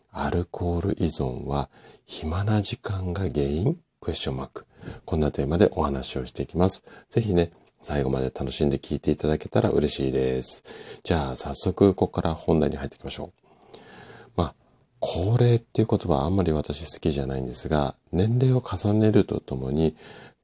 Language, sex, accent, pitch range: Japanese, male, native, 75-110 Hz